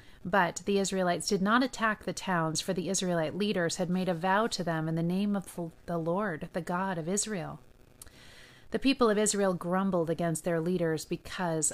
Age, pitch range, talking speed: 30-49, 165-205 Hz, 190 wpm